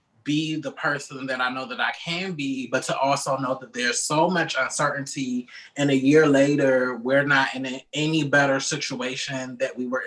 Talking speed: 190 wpm